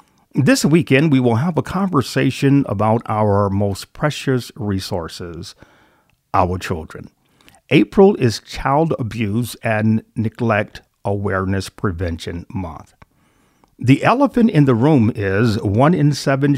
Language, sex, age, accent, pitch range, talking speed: English, male, 50-69, American, 100-135 Hz, 115 wpm